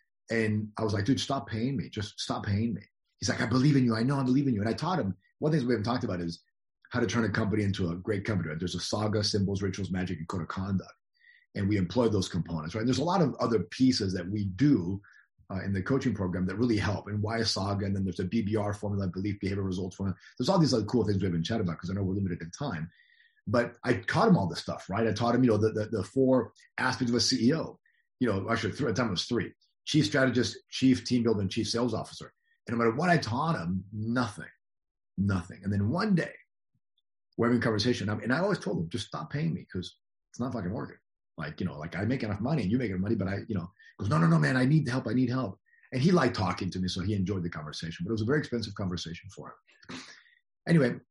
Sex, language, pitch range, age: male, English, 95-125 Hz, 30-49